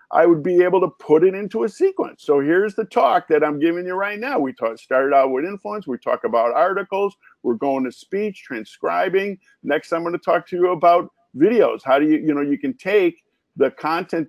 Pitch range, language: 160-245 Hz, English